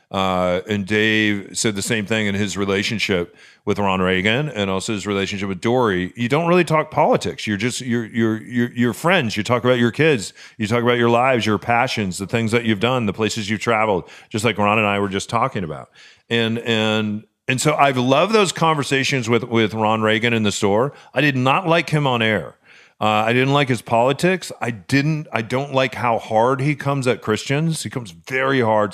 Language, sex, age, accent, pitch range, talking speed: English, male, 40-59, American, 110-140 Hz, 215 wpm